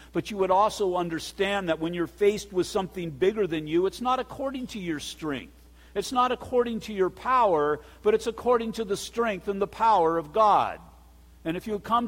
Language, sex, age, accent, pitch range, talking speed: English, male, 50-69, American, 145-200 Hz, 205 wpm